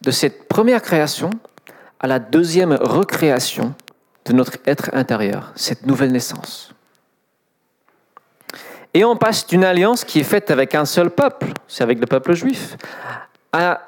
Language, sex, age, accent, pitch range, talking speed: French, male, 40-59, French, 140-210 Hz, 145 wpm